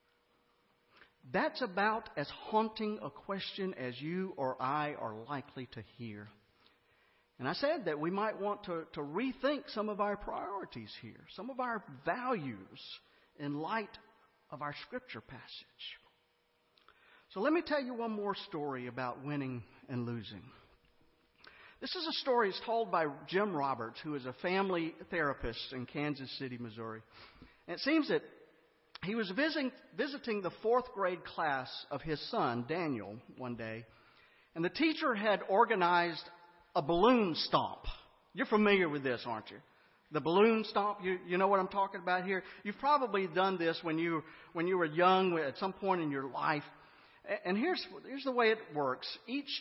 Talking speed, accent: 165 wpm, American